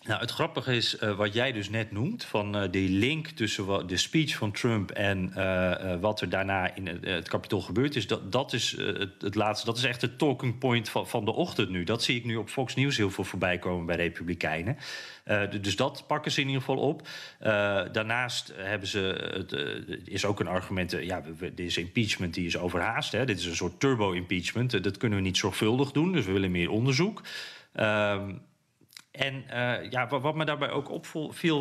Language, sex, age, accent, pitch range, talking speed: Dutch, male, 40-59, Dutch, 100-135 Hz, 220 wpm